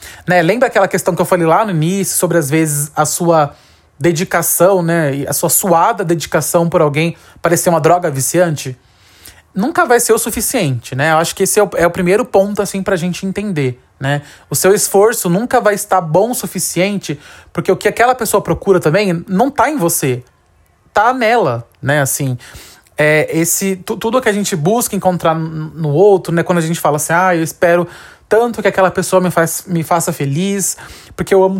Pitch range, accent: 155-195 Hz, Brazilian